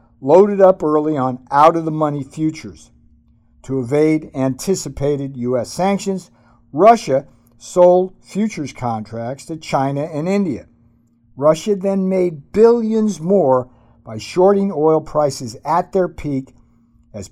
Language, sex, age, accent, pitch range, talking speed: English, male, 50-69, American, 120-185 Hz, 110 wpm